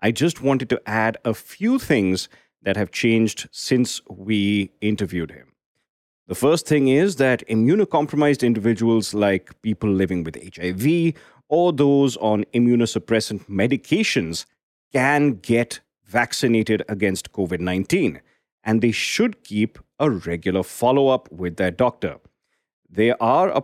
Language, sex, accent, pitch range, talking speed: English, male, Indian, 95-135 Hz, 125 wpm